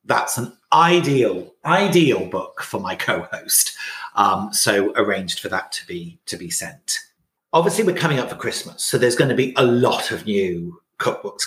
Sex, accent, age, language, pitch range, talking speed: male, British, 30-49, English, 110-160 Hz, 180 wpm